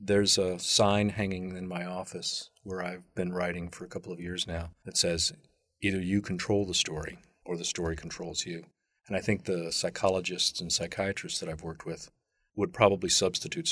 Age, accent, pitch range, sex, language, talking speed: 40-59, American, 85-100 Hz, male, English, 190 wpm